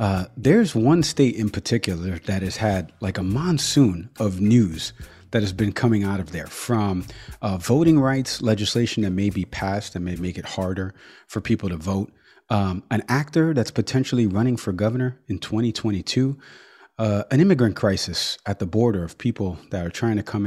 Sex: male